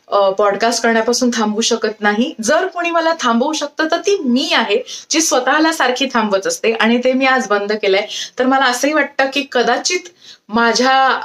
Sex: female